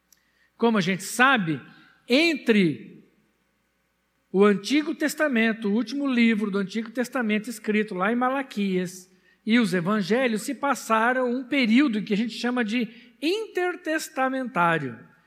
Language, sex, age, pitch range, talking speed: Portuguese, male, 60-79, 170-260 Hz, 120 wpm